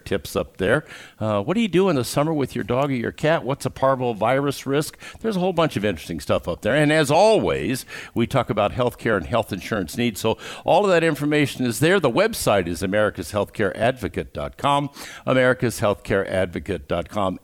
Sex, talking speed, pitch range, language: male, 185 wpm, 105-150 Hz, English